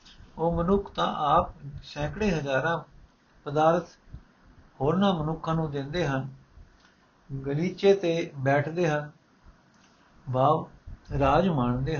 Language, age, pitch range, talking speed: Punjabi, 60-79, 140-175 Hz, 90 wpm